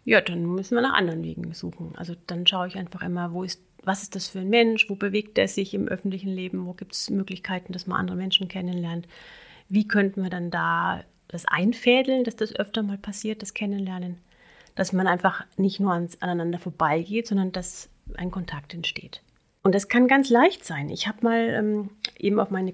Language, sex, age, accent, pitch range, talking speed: German, female, 30-49, German, 180-225 Hz, 200 wpm